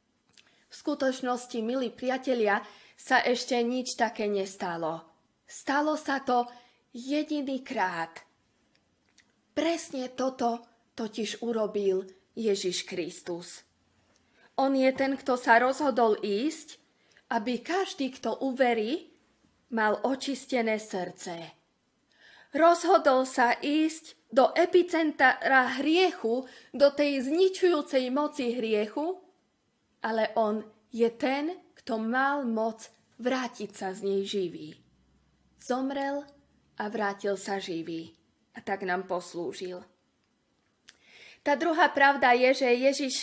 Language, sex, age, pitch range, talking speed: Slovak, female, 20-39, 215-280 Hz, 100 wpm